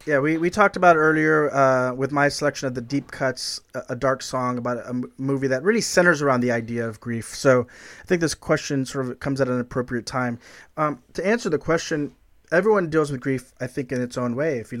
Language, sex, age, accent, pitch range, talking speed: English, male, 30-49, American, 125-145 Hz, 235 wpm